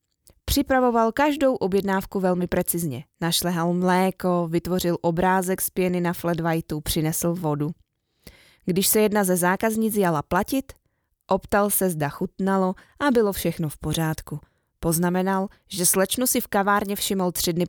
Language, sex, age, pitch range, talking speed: Czech, female, 20-39, 170-200 Hz, 140 wpm